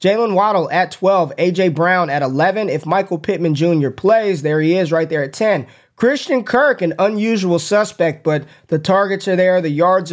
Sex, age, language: male, 20-39, English